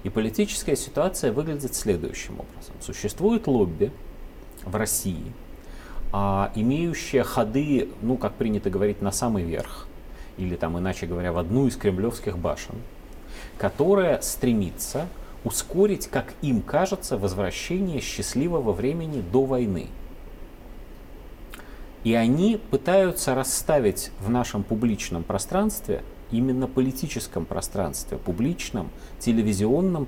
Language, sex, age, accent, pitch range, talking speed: Russian, male, 40-59, native, 100-165 Hz, 105 wpm